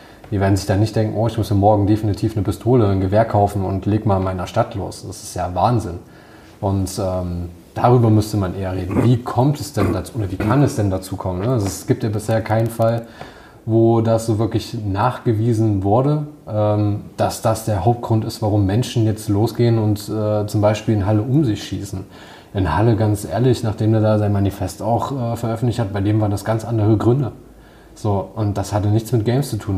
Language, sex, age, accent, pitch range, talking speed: German, male, 20-39, German, 100-115 Hz, 220 wpm